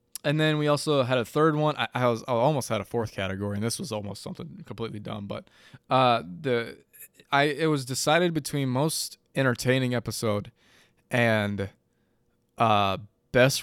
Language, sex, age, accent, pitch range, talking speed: English, male, 20-39, American, 105-140 Hz, 165 wpm